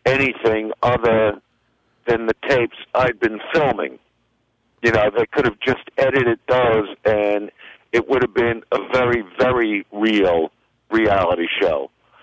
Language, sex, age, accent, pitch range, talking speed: English, male, 50-69, American, 110-130 Hz, 130 wpm